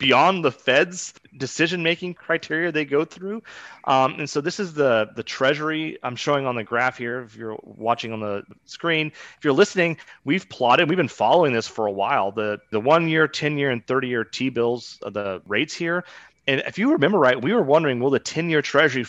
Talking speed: 195 wpm